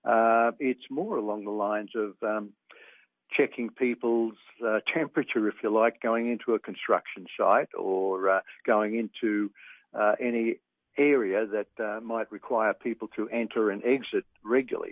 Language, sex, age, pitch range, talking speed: English, male, 60-79, 105-115 Hz, 150 wpm